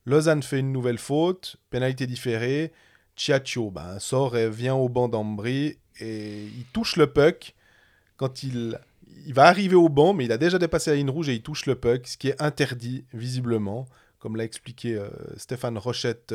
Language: French